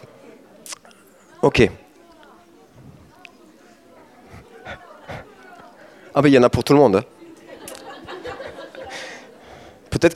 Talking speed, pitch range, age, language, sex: 85 wpm, 120-175 Hz, 30-49, French, male